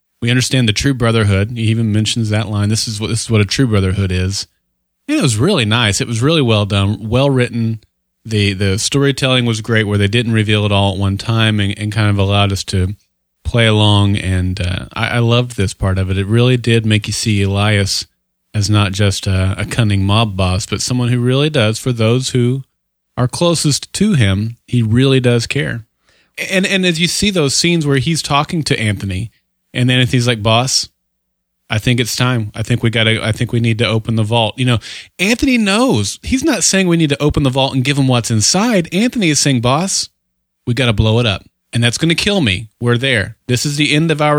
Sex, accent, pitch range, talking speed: male, American, 105-135 Hz, 225 wpm